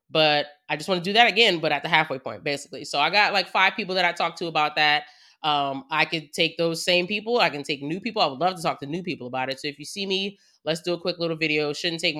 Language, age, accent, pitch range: English, 20-39, American, 140-185 Hz